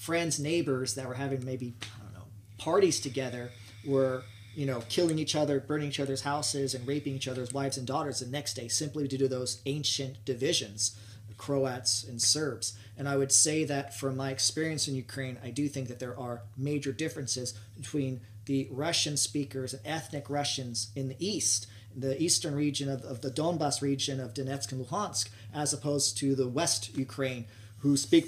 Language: Finnish